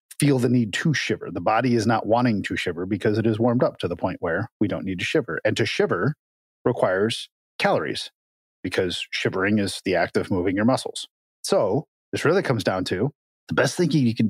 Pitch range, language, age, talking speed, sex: 110-140 Hz, English, 30-49, 215 wpm, male